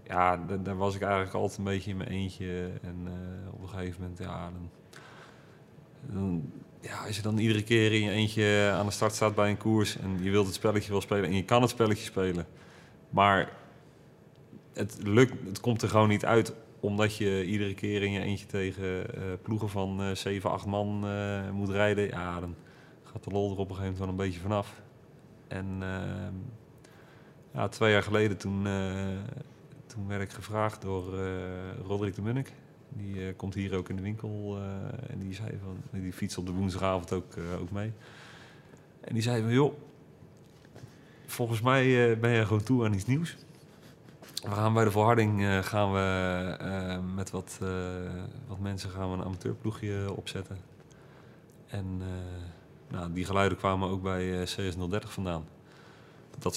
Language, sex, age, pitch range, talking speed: Dutch, male, 30-49, 95-110 Hz, 180 wpm